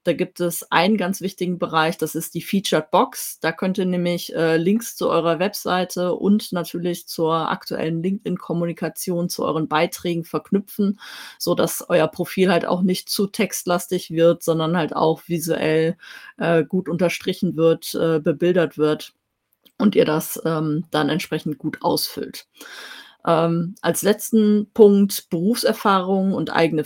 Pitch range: 165-185 Hz